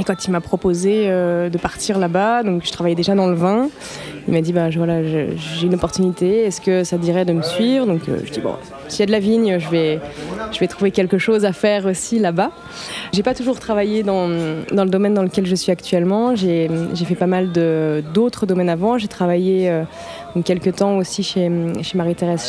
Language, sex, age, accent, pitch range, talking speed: French, female, 20-39, French, 175-215 Hz, 230 wpm